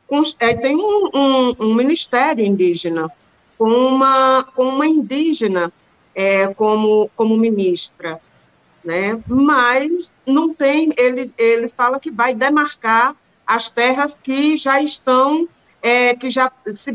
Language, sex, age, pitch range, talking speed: Portuguese, female, 40-59, 205-265 Hz, 105 wpm